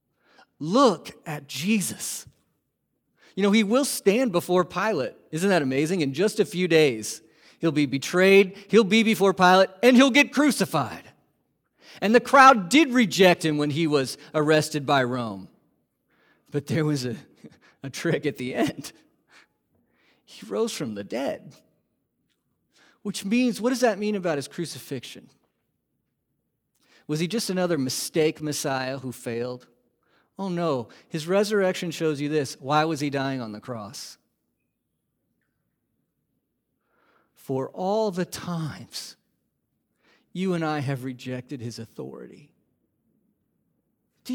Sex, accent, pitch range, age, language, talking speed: male, American, 140-205 Hz, 40-59, English, 135 wpm